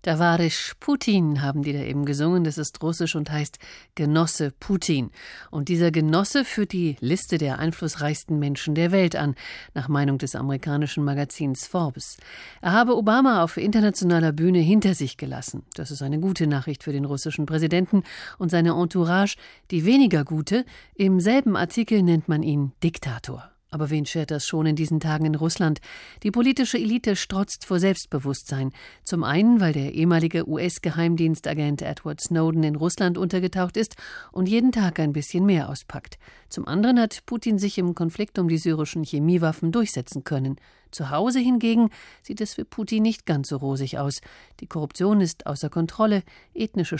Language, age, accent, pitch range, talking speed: German, 50-69, German, 145-190 Hz, 165 wpm